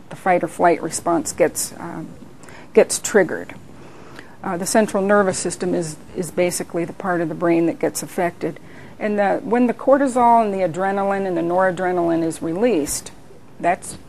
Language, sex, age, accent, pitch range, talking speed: English, female, 40-59, American, 175-200 Hz, 160 wpm